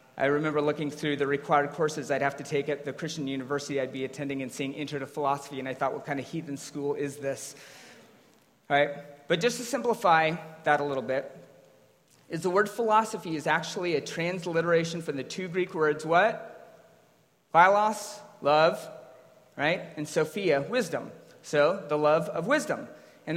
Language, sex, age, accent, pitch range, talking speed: English, male, 30-49, American, 145-220 Hz, 175 wpm